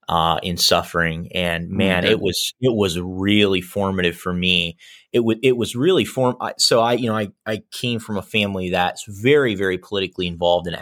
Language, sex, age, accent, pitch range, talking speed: English, male, 30-49, American, 90-110 Hz, 195 wpm